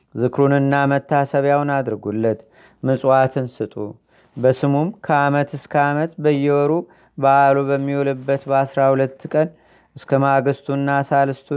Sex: male